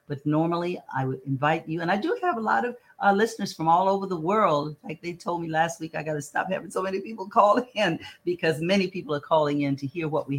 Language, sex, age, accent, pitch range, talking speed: English, female, 50-69, American, 140-165 Hz, 265 wpm